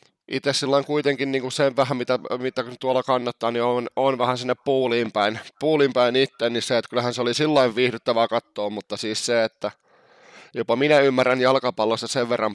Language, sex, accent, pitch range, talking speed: Finnish, male, native, 105-130 Hz, 185 wpm